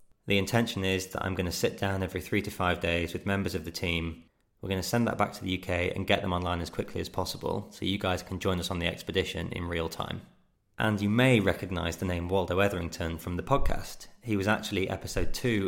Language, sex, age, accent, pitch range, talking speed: English, male, 20-39, British, 90-100 Hz, 245 wpm